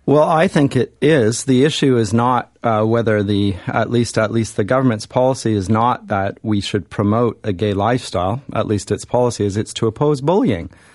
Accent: American